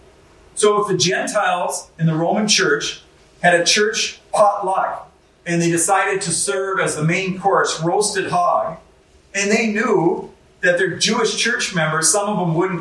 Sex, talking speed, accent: male, 165 wpm, American